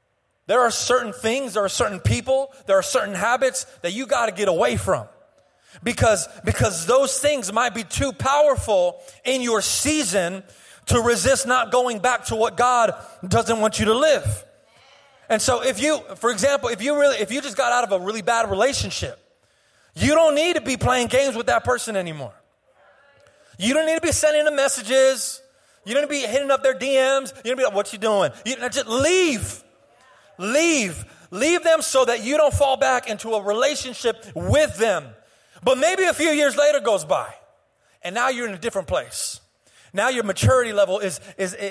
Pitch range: 220-285 Hz